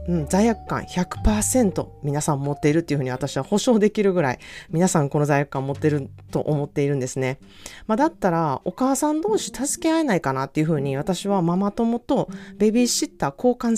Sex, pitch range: female, 140-195 Hz